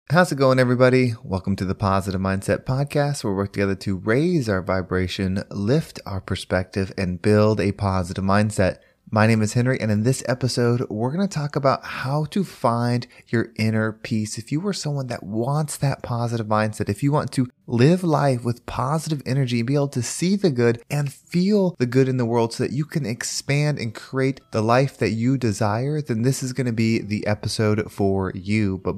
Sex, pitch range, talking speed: male, 100-135 Hz, 205 wpm